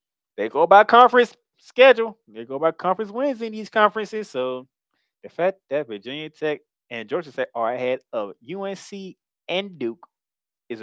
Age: 20-39